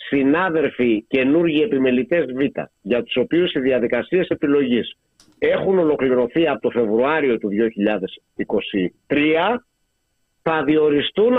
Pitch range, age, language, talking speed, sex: 125-185 Hz, 50-69, Greek, 100 wpm, male